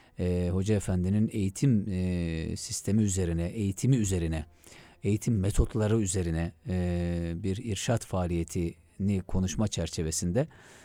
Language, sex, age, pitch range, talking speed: Turkish, male, 40-59, 95-115 Hz, 100 wpm